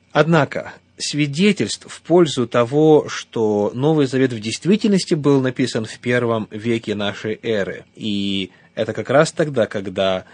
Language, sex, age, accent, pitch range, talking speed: Russian, male, 20-39, native, 115-150 Hz, 135 wpm